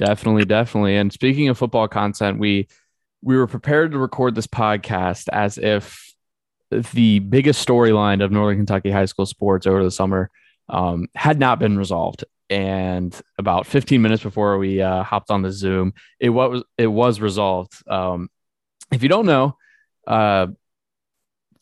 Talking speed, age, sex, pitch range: 155 wpm, 20-39, male, 100-130 Hz